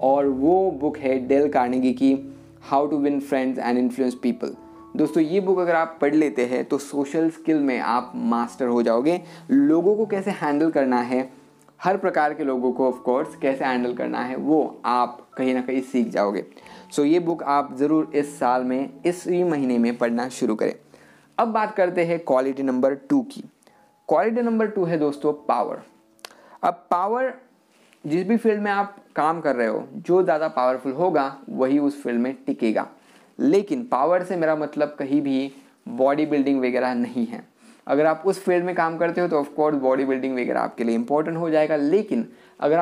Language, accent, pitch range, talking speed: Hindi, native, 130-180 Hz, 190 wpm